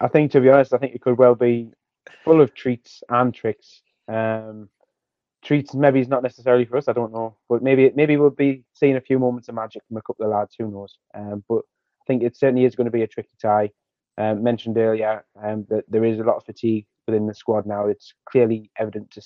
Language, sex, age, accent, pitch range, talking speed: English, male, 20-39, British, 110-125 Hz, 240 wpm